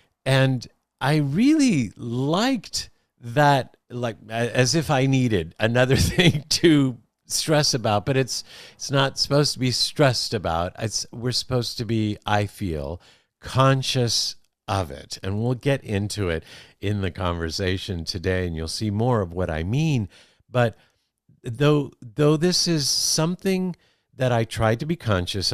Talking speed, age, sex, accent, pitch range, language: 150 wpm, 50-69, male, American, 90-130 Hz, English